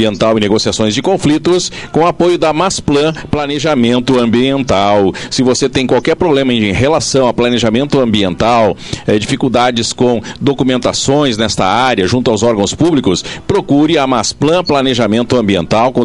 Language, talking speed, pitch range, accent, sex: Portuguese, 130 wpm, 115-150 Hz, Brazilian, male